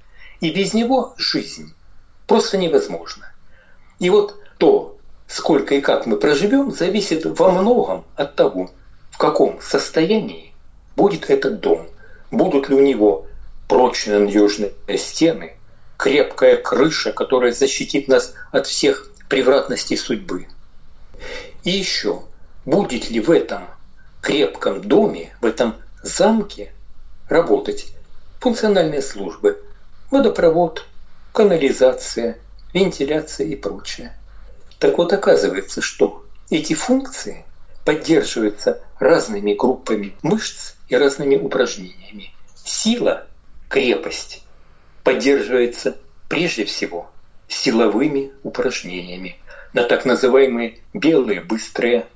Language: Russian